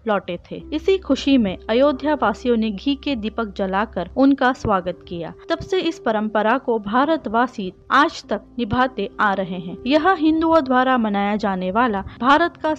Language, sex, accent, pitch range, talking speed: Hindi, female, native, 215-290 Hz, 165 wpm